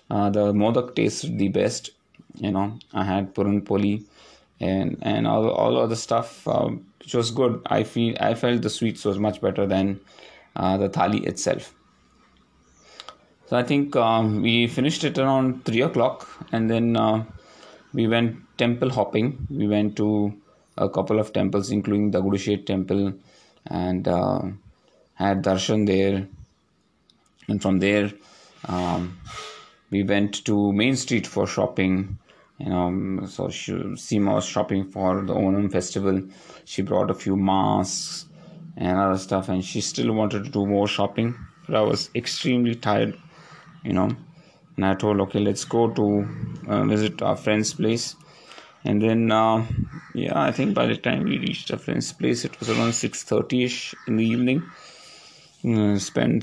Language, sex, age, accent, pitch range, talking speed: English, male, 20-39, Indian, 95-115 Hz, 155 wpm